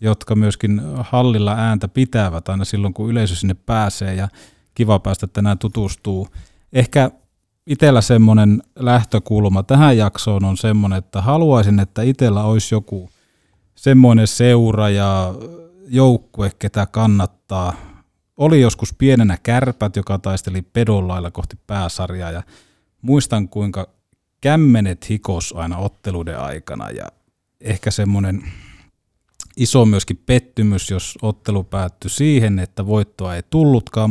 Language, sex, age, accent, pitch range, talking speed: Finnish, male, 30-49, native, 95-120 Hz, 120 wpm